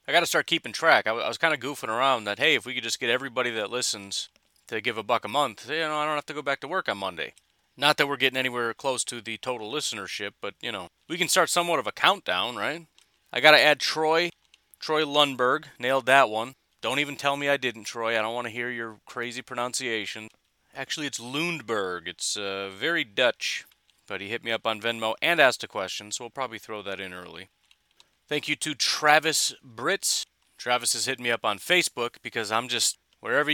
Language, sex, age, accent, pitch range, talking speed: English, male, 30-49, American, 115-145 Hz, 225 wpm